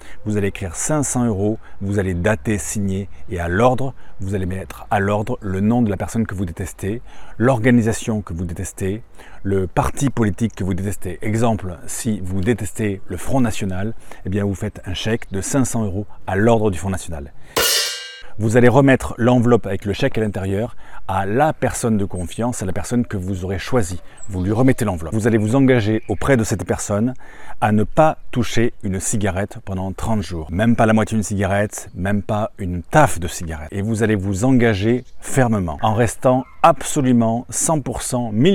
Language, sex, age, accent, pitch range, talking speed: French, male, 30-49, French, 95-120 Hz, 185 wpm